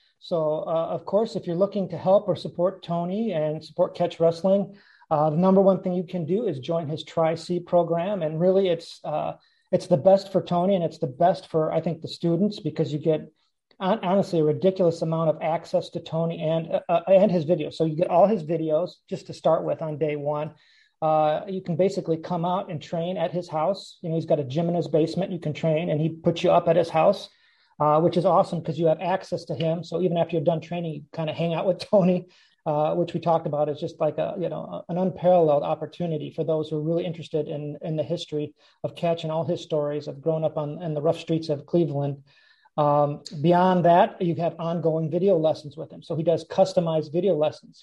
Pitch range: 155-180 Hz